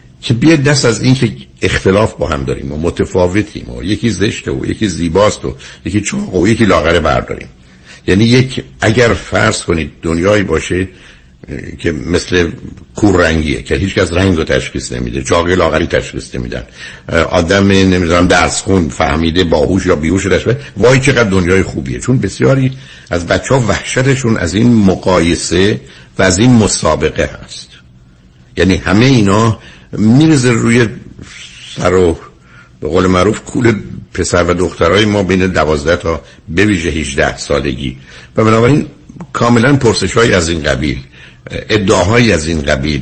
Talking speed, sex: 145 wpm, male